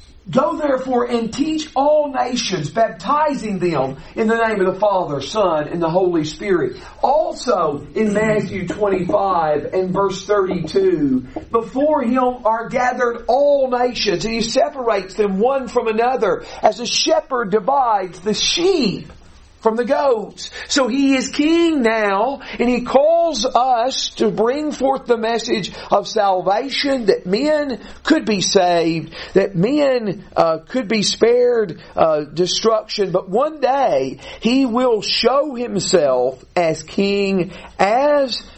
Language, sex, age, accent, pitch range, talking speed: English, male, 50-69, American, 190-265 Hz, 135 wpm